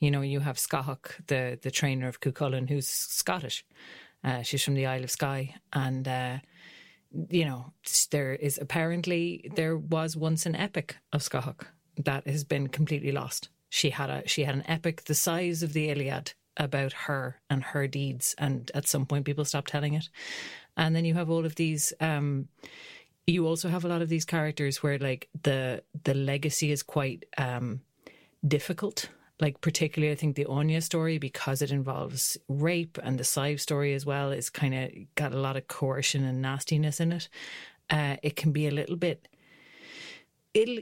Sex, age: female, 30-49